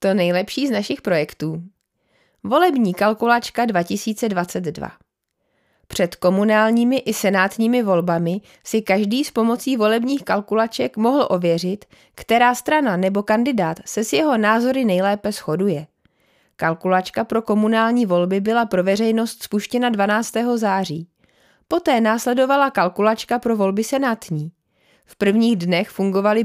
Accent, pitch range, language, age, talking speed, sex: native, 190-240 Hz, Czech, 30-49, 115 wpm, female